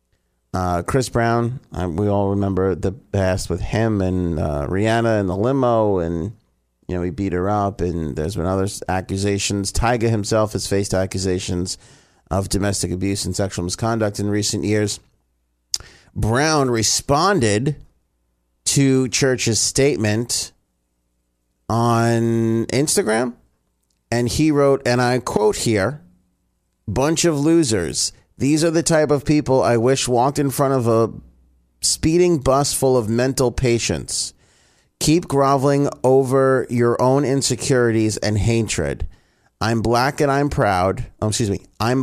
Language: English